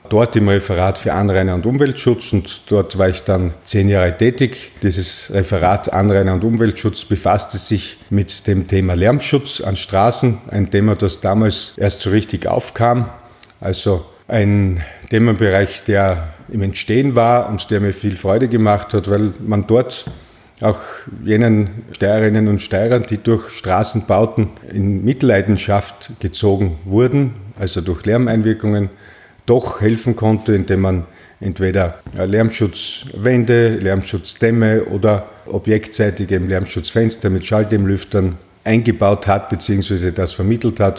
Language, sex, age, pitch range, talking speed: German, male, 50-69, 95-110 Hz, 125 wpm